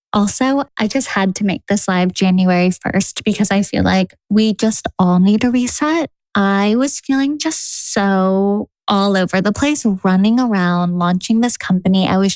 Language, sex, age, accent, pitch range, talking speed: English, female, 10-29, American, 195-240 Hz, 175 wpm